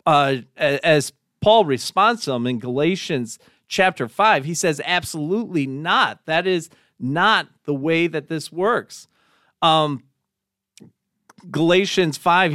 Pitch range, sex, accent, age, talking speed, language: 140-185 Hz, male, American, 40-59, 120 wpm, English